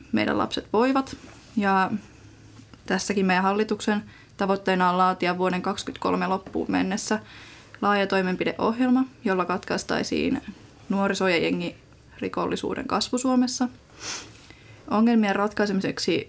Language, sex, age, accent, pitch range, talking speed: Finnish, female, 20-39, native, 185-225 Hz, 90 wpm